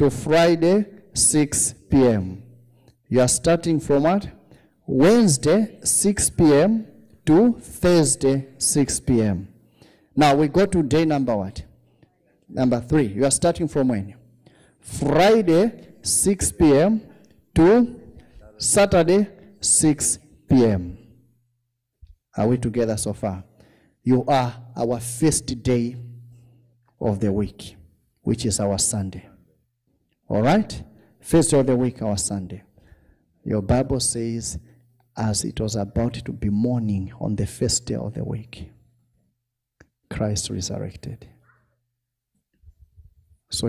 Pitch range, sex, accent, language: 105-140 Hz, male, South African, English